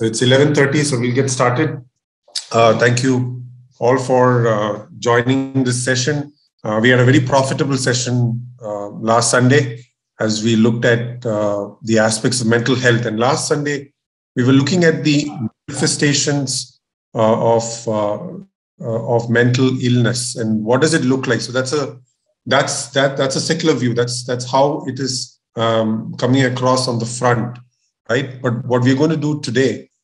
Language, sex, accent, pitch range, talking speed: English, male, Indian, 115-140 Hz, 170 wpm